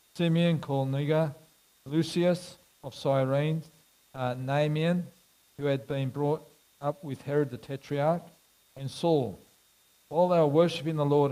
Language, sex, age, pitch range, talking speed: English, male, 50-69, 140-175 Hz, 125 wpm